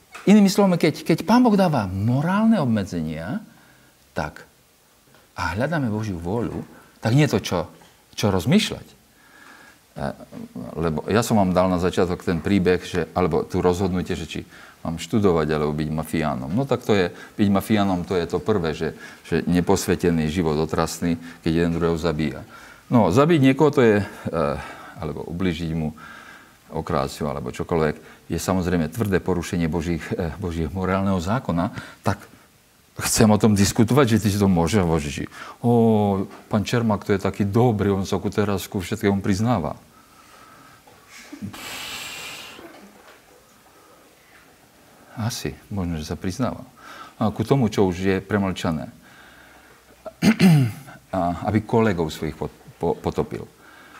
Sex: male